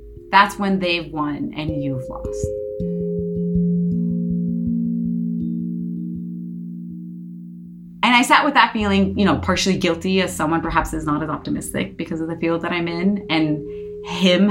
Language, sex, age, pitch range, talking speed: English, female, 30-49, 145-180 Hz, 135 wpm